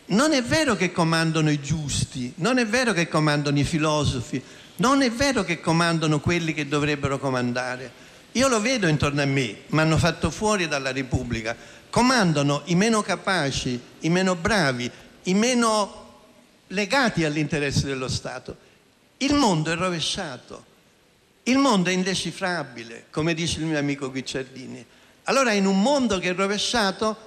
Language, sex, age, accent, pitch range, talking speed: Italian, male, 60-79, native, 145-210 Hz, 150 wpm